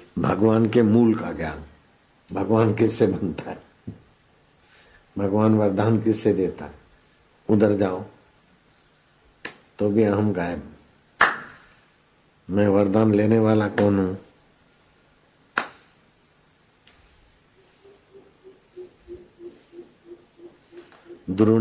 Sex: male